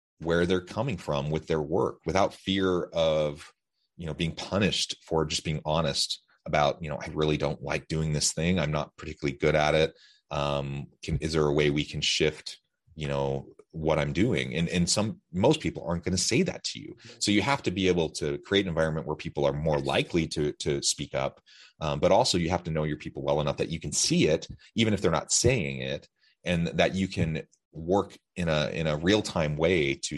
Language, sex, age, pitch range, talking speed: English, male, 30-49, 75-85 Hz, 225 wpm